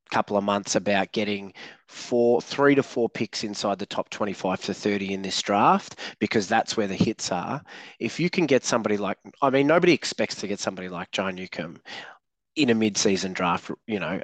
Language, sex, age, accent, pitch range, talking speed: English, male, 20-39, Australian, 100-120 Hz, 200 wpm